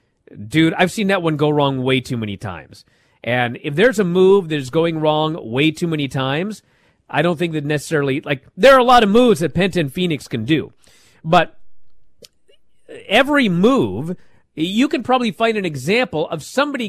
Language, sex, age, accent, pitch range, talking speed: English, male, 40-59, American, 160-230 Hz, 190 wpm